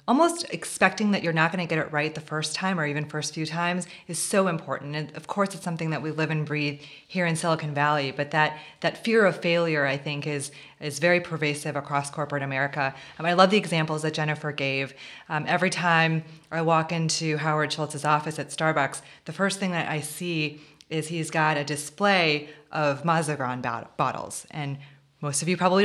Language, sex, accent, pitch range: English, female, American, 145-170 Hz